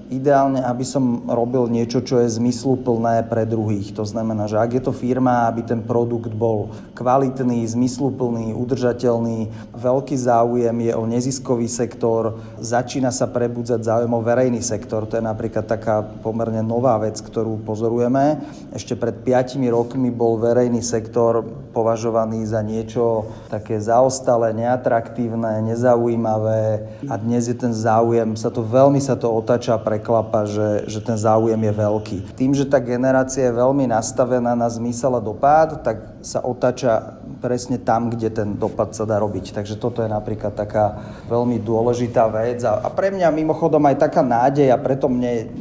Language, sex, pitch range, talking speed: Slovak, male, 110-125 Hz, 160 wpm